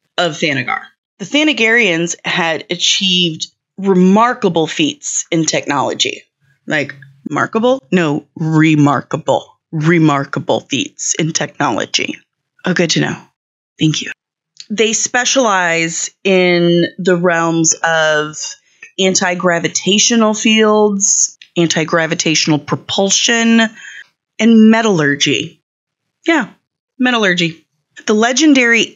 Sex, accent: female, American